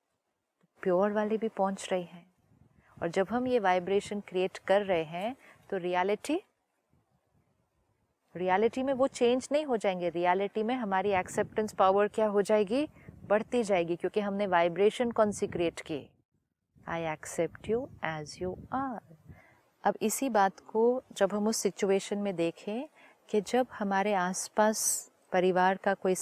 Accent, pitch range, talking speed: native, 185-220 Hz, 145 wpm